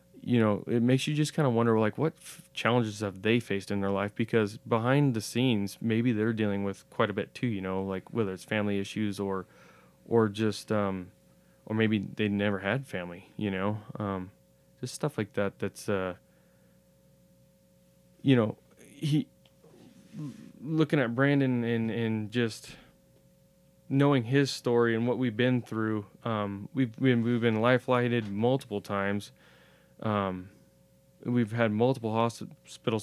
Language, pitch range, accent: English, 105-125 Hz, American